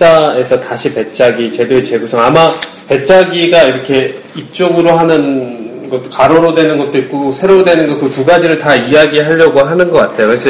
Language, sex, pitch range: Korean, male, 130-180 Hz